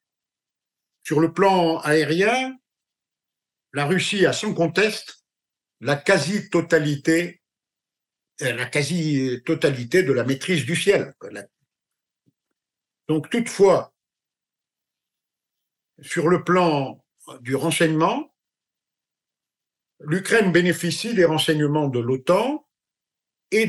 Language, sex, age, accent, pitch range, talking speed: French, male, 50-69, French, 145-190 Hz, 80 wpm